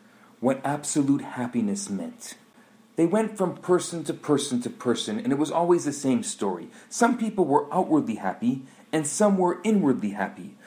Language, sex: English, male